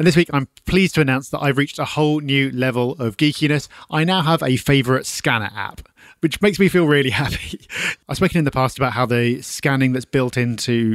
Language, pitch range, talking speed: English, 115-145 Hz, 225 wpm